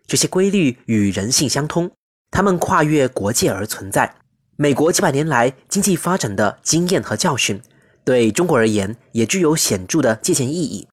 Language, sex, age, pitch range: Chinese, male, 20-39, 115-185 Hz